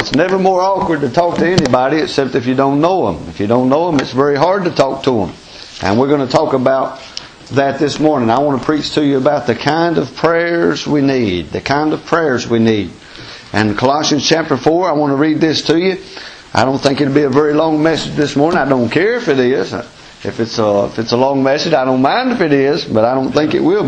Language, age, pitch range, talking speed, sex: English, 50-69, 135-180 Hz, 255 wpm, male